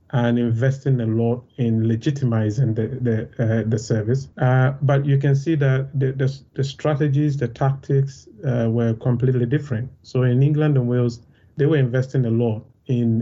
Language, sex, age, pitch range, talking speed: English, male, 30-49, 115-135 Hz, 175 wpm